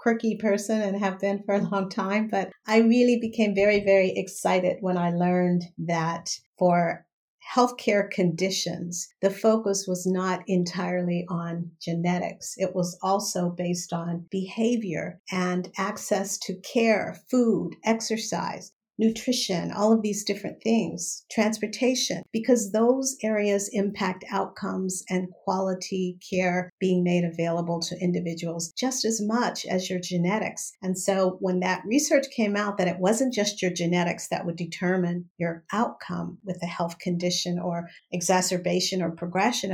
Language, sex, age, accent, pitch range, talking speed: English, female, 50-69, American, 175-210 Hz, 140 wpm